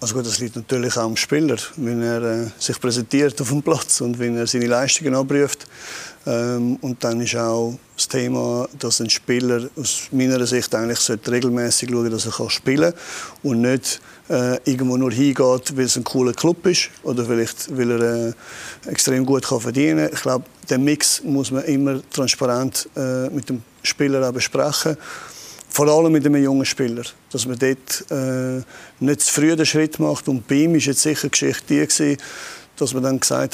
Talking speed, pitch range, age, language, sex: 190 wpm, 125-145 Hz, 50-69, German, male